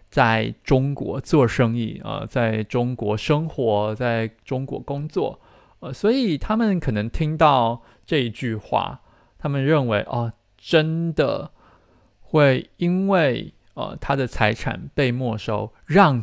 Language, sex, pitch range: Chinese, male, 105-140 Hz